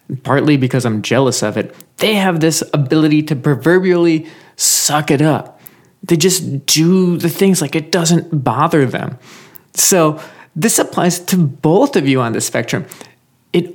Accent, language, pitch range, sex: American, English, 135-180 Hz, male